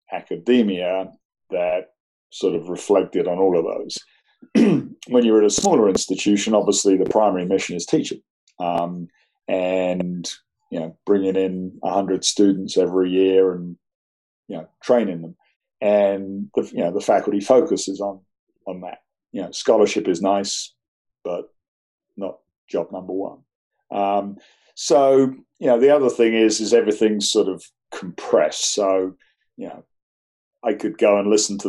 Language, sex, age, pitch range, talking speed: English, male, 40-59, 95-105 Hz, 150 wpm